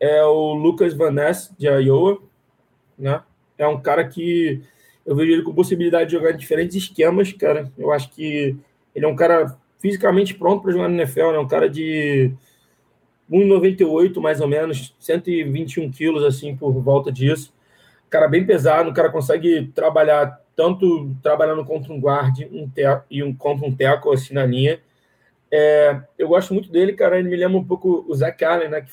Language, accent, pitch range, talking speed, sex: Portuguese, Brazilian, 145-165 Hz, 185 wpm, male